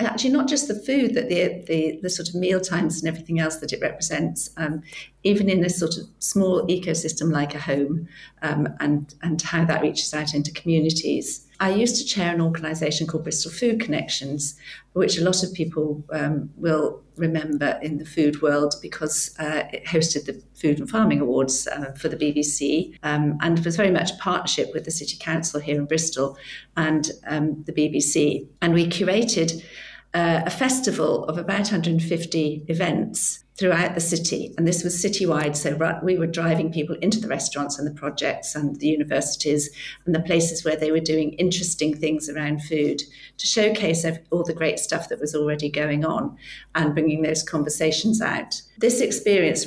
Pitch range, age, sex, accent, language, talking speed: 150-180 Hz, 50-69, female, British, English, 180 wpm